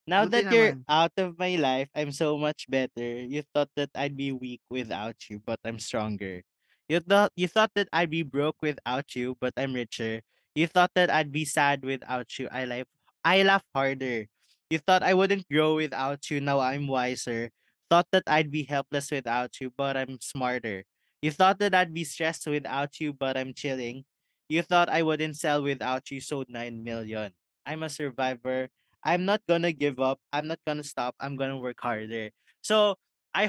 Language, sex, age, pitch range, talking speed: Filipino, male, 20-39, 125-170 Hz, 190 wpm